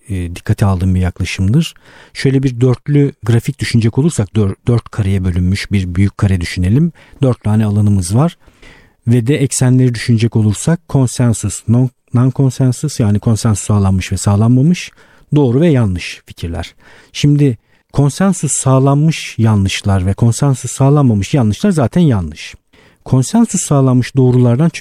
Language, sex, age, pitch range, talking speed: Turkish, male, 50-69, 105-145 Hz, 125 wpm